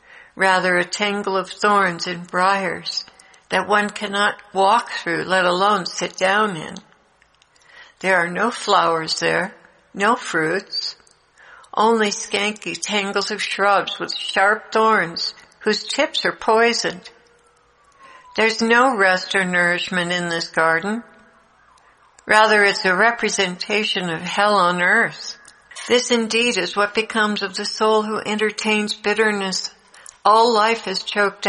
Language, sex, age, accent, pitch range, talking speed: English, female, 60-79, American, 185-220 Hz, 130 wpm